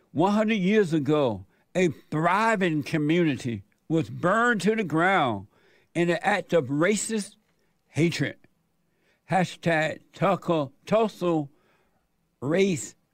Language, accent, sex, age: English, American, male, 60-79